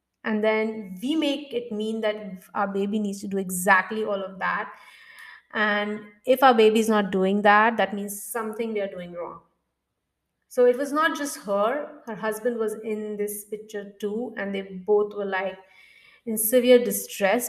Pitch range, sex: 205-275 Hz, female